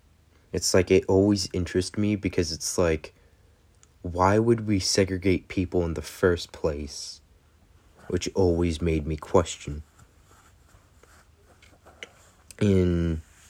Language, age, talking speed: English, 30-49, 105 wpm